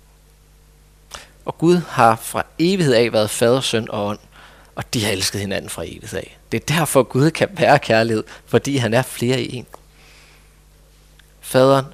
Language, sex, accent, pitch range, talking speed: Danish, male, native, 110-140 Hz, 165 wpm